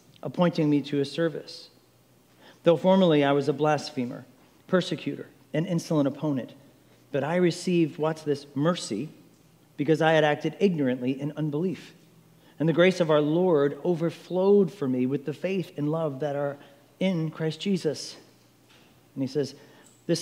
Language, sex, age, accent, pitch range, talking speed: English, male, 40-59, American, 130-175 Hz, 150 wpm